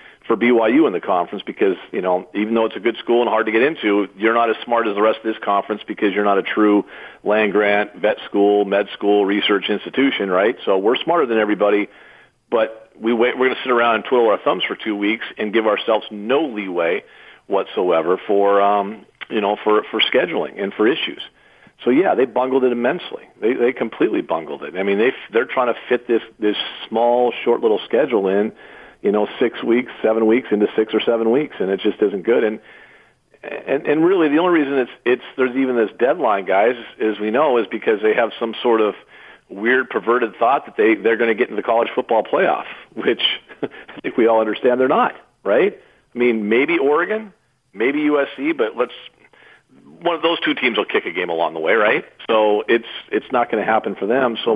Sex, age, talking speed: male, 50-69, 220 wpm